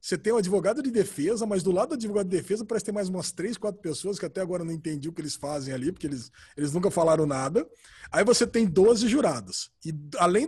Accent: Brazilian